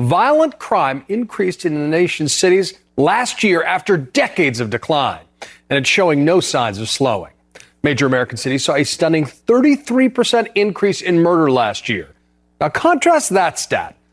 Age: 40-59